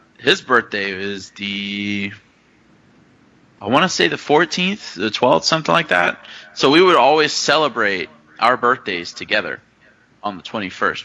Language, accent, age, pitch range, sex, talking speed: English, American, 20-39, 95-115 Hz, male, 140 wpm